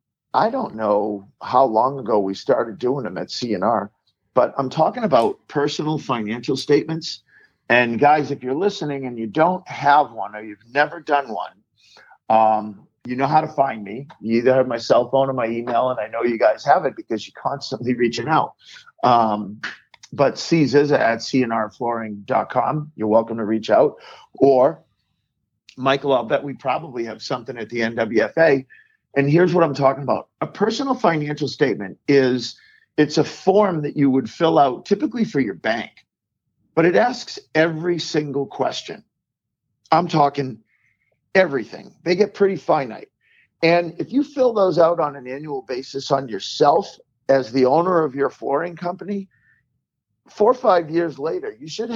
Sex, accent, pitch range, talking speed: male, American, 120-165 Hz, 165 wpm